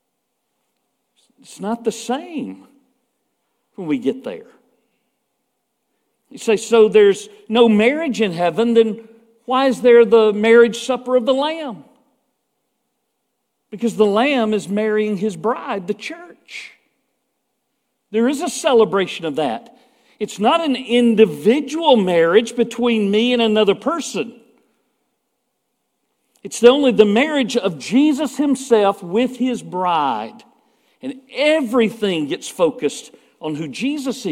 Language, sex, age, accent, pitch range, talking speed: English, male, 50-69, American, 215-260 Hz, 120 wpm